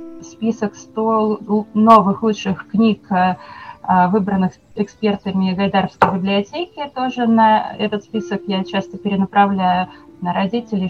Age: 20-39